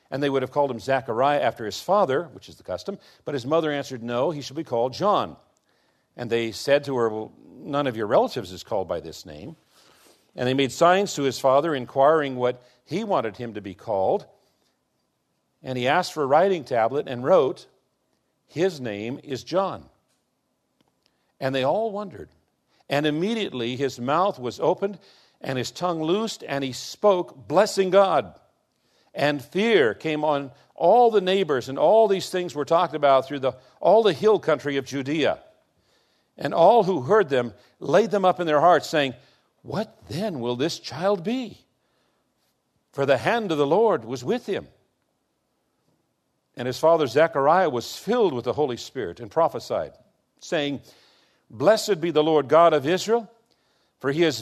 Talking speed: 175 wpm